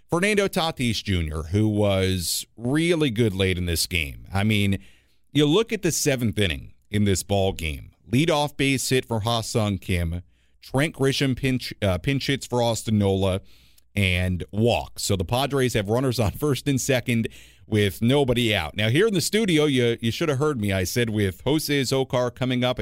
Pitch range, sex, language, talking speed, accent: 95-140 Hz, male, English, 185 wpm, American